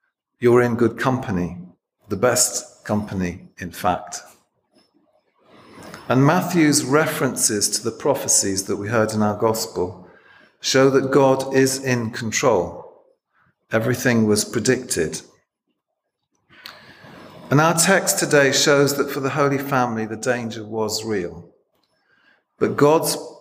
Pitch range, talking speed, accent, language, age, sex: 110-145 Hz, 120 wpm, British, English, 40-59, male